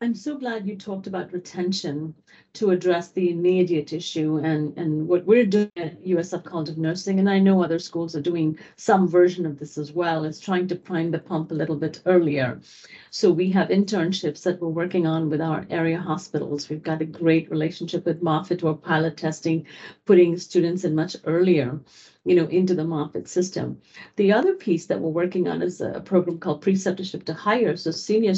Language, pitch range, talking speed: English, 155-180 Hz, 200 wpm